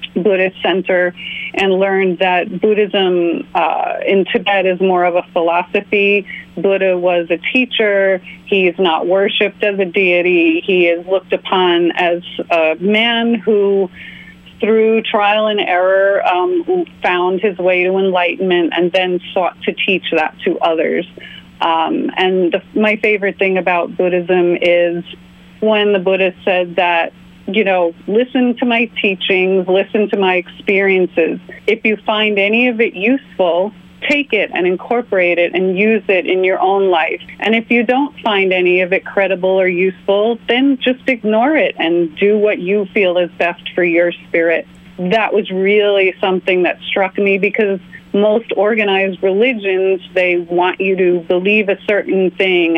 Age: 30-49